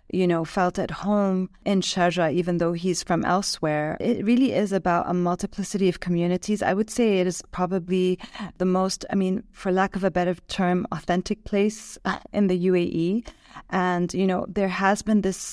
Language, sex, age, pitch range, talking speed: English, female, 30-49, 170-200 Hz, 180 wpm